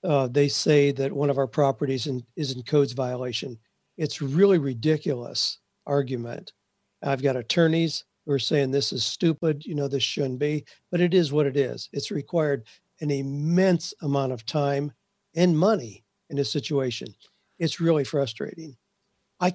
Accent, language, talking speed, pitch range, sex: American, English, 165 wpm, 140-170 Hz, male